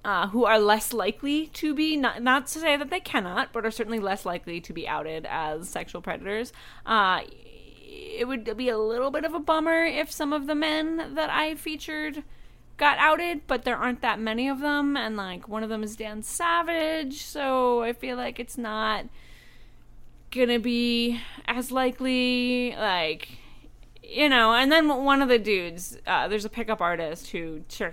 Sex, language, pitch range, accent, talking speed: female, English, 195-275 Hz, American, 185 wpm